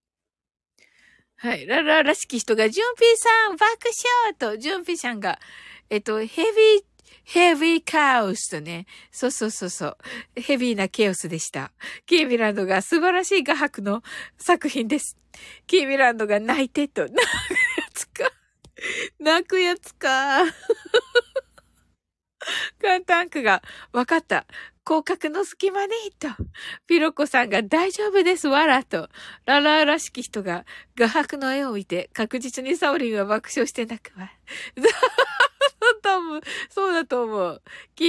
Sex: female